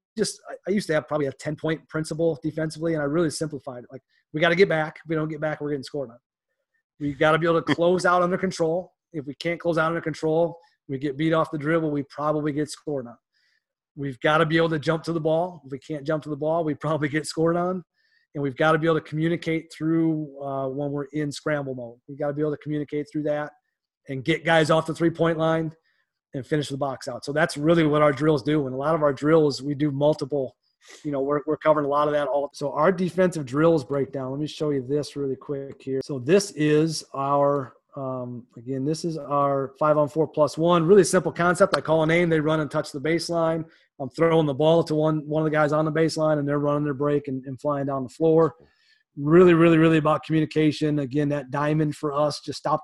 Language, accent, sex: English, American, male